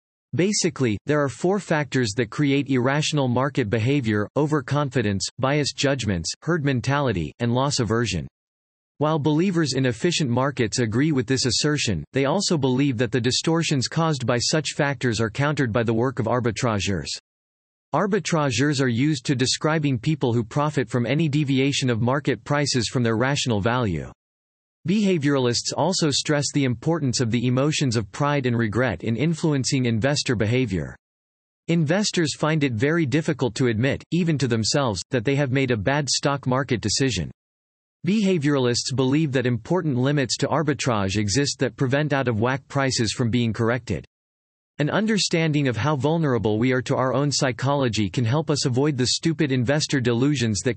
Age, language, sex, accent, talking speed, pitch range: 40-59, English, male, American, 155 wpm, 120-150 Hz